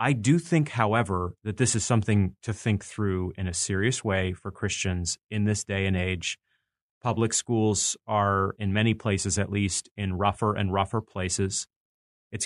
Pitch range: 95-110 Hz